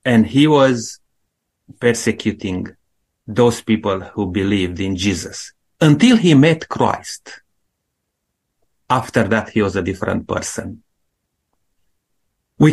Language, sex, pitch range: English, male, 110-145 Hz